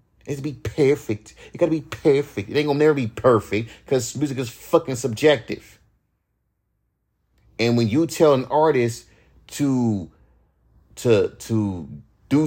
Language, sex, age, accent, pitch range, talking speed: English, male, 30-49, American, 115-180 Hz, 145 wpm